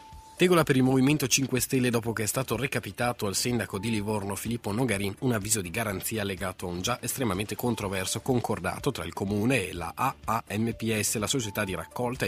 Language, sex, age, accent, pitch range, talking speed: Italian, male, 30-49, native, 95-125 Hz, 185 wpm